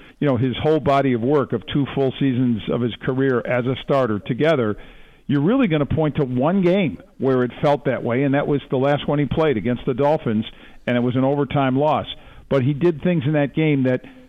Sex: male